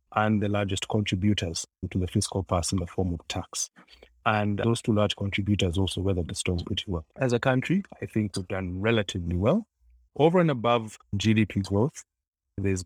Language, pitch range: English, 95-120 Hz